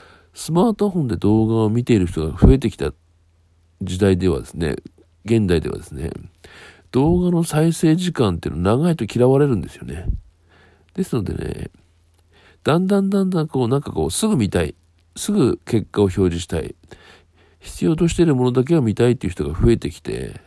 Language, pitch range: Japanese, 85-120 Hz